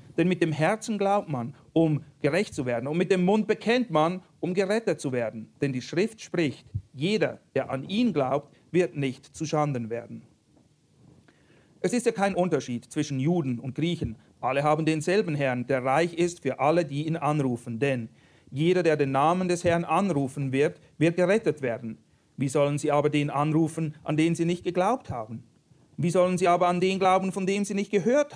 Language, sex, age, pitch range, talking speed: German, male, 40-59, 140-180 Hz, 195 wpm